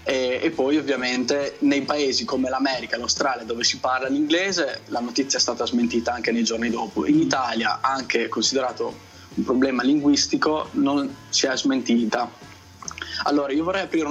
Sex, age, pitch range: male, 20-39, 120-155 Hz